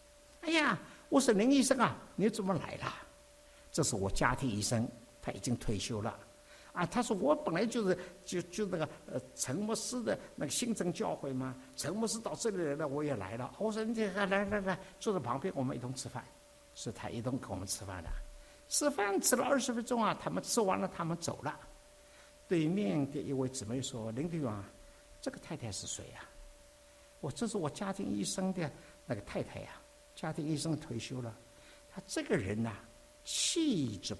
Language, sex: English, male